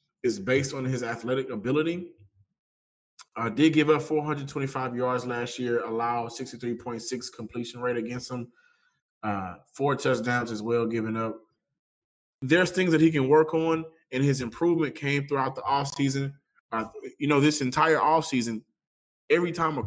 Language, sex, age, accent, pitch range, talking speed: English, male, 20-39, American, 120-155 Hz, 150 wpm